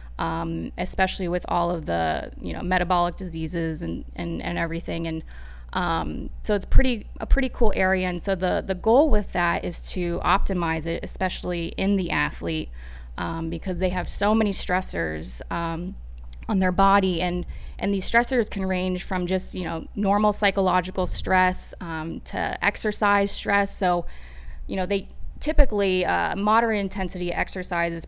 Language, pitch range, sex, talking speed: English, 170-200 Hz, female, 160 wpm